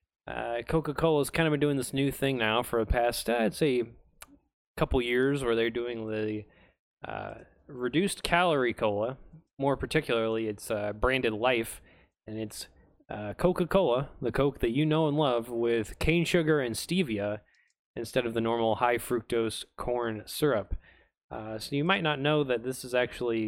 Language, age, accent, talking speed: English, 20-39, American, 165 wpm